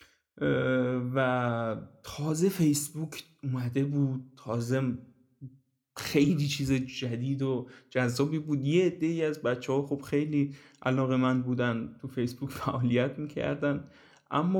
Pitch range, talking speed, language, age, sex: 120-145 Hz, 110 wpm, Persian, 20-39, male